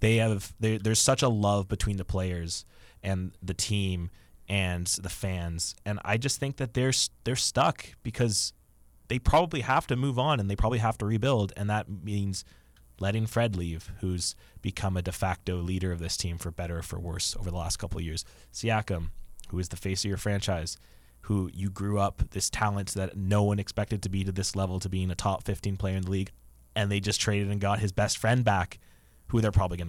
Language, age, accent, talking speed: English, 20-39, American, 215 wpm